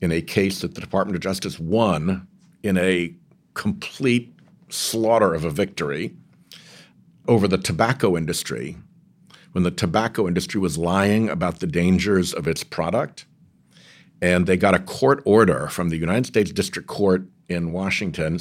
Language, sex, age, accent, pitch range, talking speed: English, male, 60-79, American, 85-115 Hz, 150 wpm